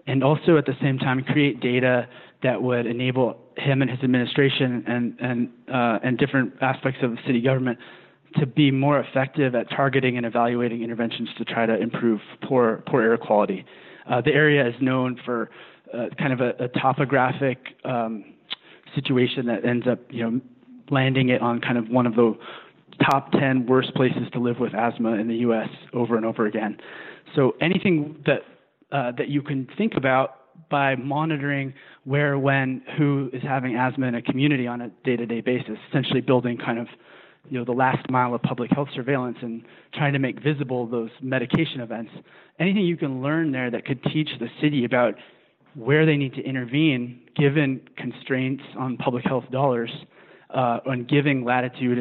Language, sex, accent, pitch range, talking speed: English, male, American, 120-140 Hz, 180 wpm